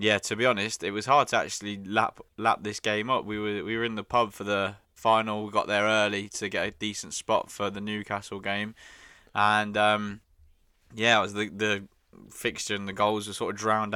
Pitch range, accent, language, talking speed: 100-110 Hz, British, English, 225 wpm